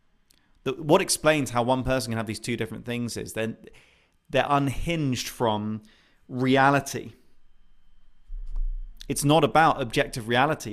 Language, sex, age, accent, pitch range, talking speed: English, male, 30-49, British, 100-130 Hz, 125 wpm